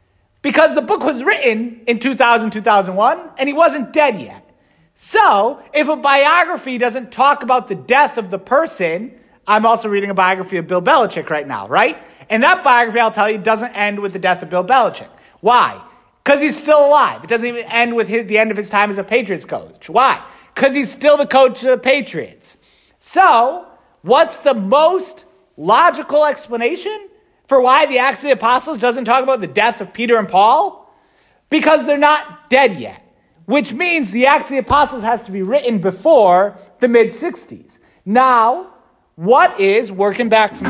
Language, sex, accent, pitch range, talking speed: English, male, American, 230-300 Hz, 185 wpm